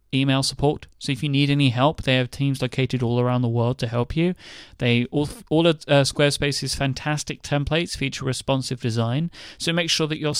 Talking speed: 200 wpm